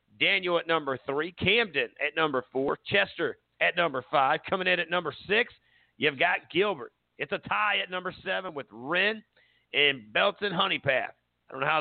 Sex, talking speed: male, 180 wpm